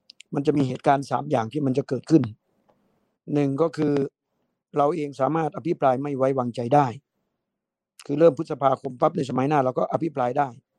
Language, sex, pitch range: Thai, male, 135-165 Hz